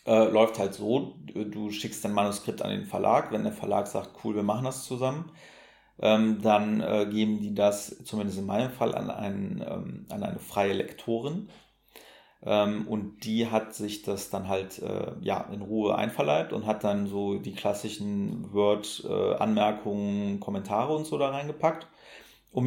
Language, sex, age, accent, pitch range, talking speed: German, male, 40-59, German, 105-115 Hz, 160 wpm